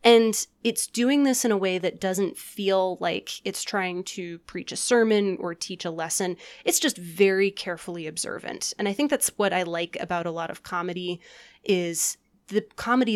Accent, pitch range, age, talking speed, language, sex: American, 175-215 Hz, 20-39, 185 wpm, English, female